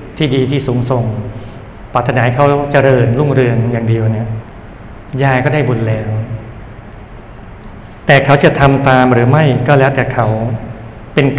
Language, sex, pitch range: Thai, male, 115-135 Hz